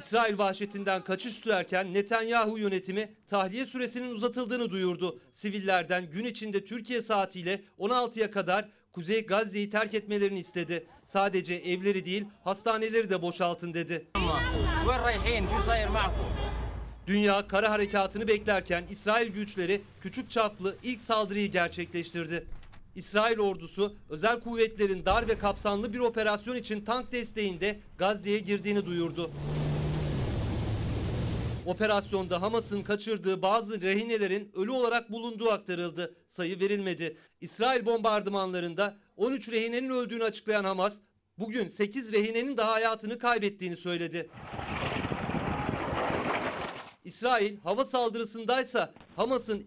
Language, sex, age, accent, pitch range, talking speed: Turkish, male, 40-59, native, 185-225 Hz, 100 wpm